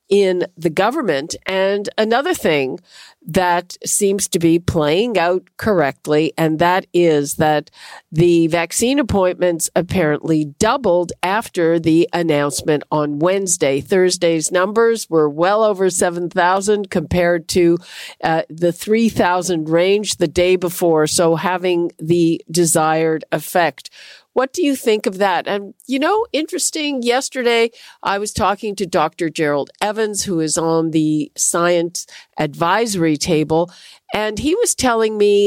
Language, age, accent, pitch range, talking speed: English, 50-69, American, 165-210 Hz, 130 wpm